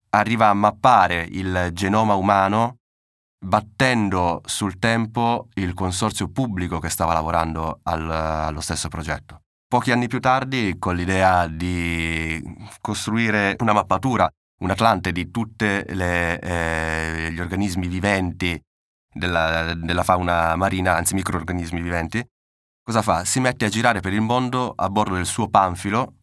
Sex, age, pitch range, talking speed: male, 20-39, 85-100 Hz, 130 wpm